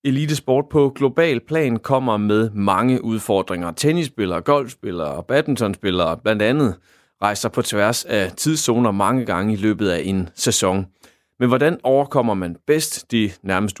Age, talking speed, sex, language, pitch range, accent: 30-49, 150 wpm, male, Danish, 100-130 Hz, native